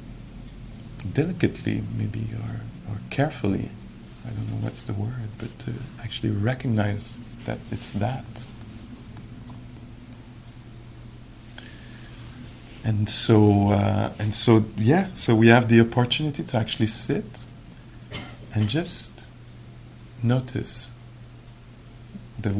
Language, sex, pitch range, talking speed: English, male, 110-120 Hz, 95 wpm